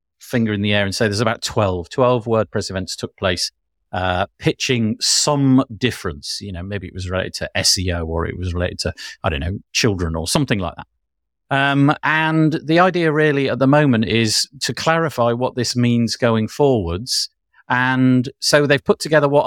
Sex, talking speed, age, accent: male, 190 wpm, 40-59, British